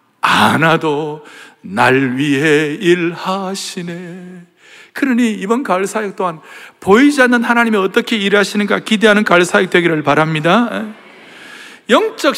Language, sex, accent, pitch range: Korean, male, native, 185-275 Hz